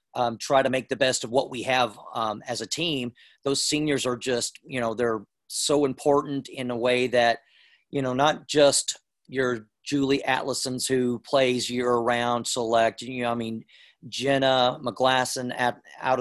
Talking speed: 165 wpm